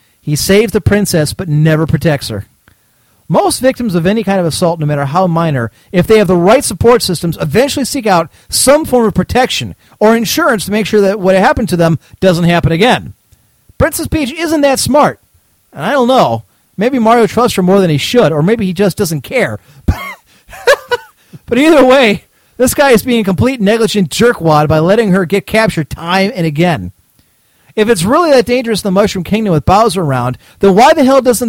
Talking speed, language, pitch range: 200 wpm, English, 165-235 Hz